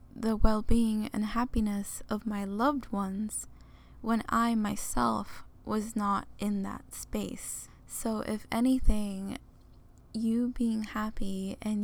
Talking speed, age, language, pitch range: 115 wpm, 10-29, English, 210-240 Hz